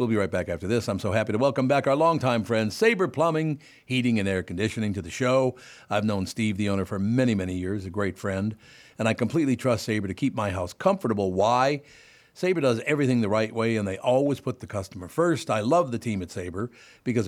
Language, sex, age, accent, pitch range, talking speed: English, male, 60-79, American, 105-130 Hz, 235 wpm